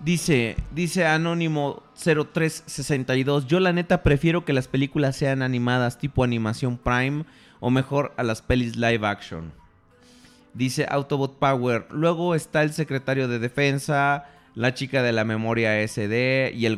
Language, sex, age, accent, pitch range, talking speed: Spanish, male, 30-49, Mexican, 120-160 Hz, 145 wpm